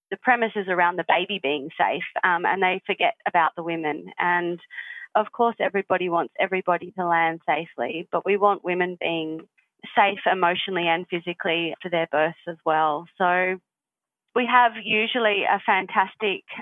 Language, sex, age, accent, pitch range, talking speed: English, female, 30-49, Australian, 175-215 Hz, 160 wpm